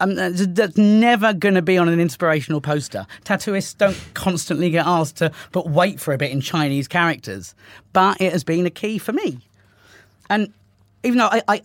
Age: 40-59